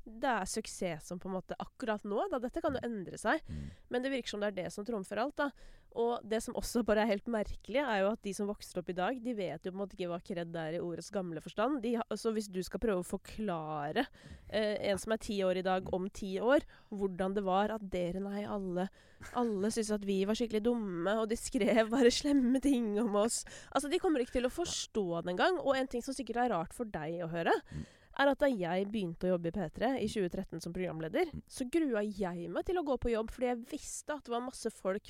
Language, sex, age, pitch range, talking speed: English, female, 20-39, 180-230 Hz, 245 wpm